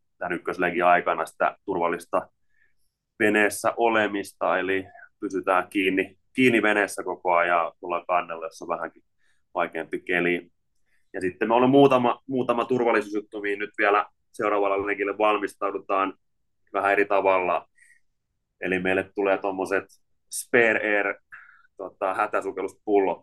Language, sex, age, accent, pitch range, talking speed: Finnish, male, 20-39, native, 90-105 Hz, 120 wpm